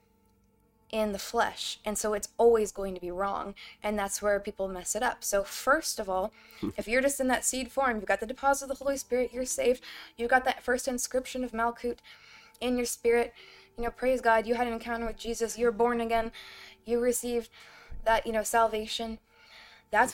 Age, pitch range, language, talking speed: 20-39, 210-245 Hz, English, 205 wpm